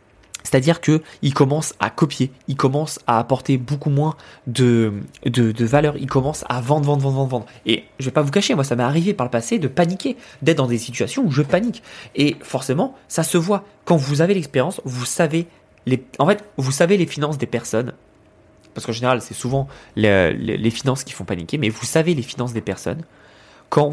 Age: 20-39